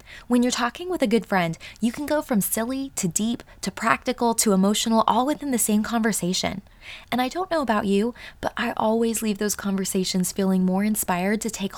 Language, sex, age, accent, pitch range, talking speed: English, female, 20-39, American, 190-240 Hz, 205 wpm